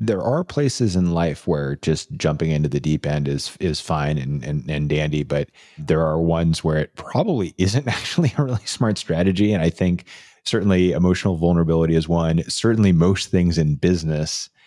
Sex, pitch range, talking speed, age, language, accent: male, 80-95 Hz, 185 wpm, 30-49, English, American